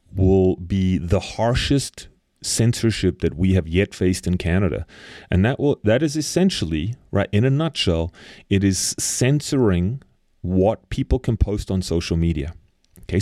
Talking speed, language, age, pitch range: 150 wpm, English, 30-49, 90-110 Hz